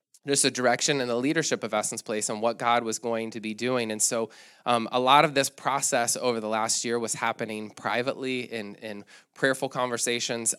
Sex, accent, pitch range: male, American, 110-130 Hz